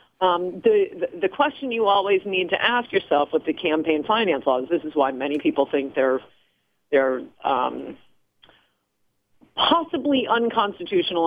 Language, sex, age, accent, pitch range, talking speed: English, female, 40-59, American, 170-250 Hz, 145 wpm